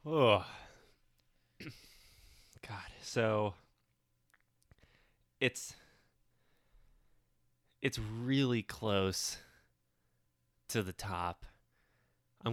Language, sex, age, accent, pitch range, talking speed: English, male, 20-39, American, 95-115 Hz, 55 wpm